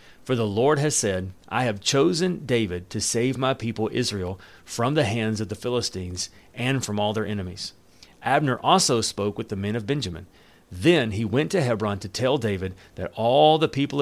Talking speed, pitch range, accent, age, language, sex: 195 wpm, 100-135 Hz, American, 40-59, English, male